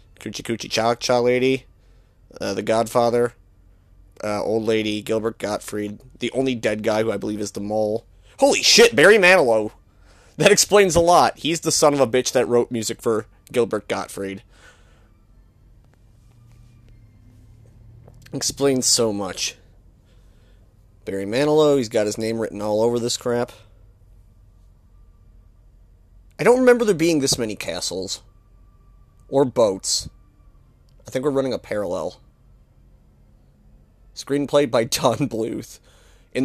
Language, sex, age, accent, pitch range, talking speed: English, male, 30-49, American, 100-125 Hz, 130 wpm